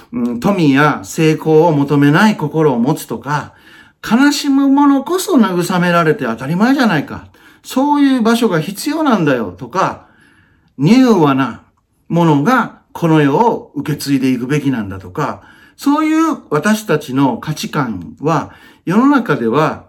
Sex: male